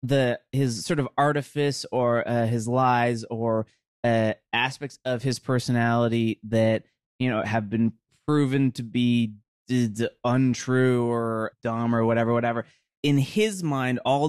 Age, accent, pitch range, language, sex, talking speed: 20-39, American, 120-160 Hz, English, male, 140 wpm